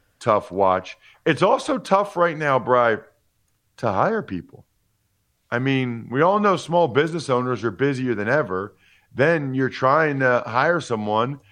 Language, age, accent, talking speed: English, 40-59, American, 150 wpm